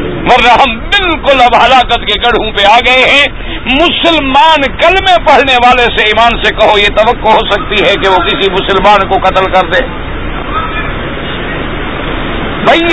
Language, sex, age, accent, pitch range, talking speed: English, male, 60-79, Indian, 240-320 Hz, 145 wpm